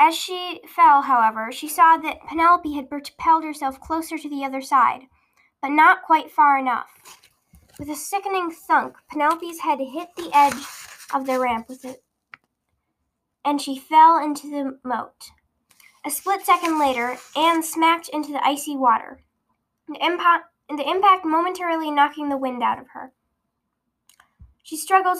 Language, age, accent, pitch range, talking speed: English, 10-29, American, 270-325 Hz, 150 wpm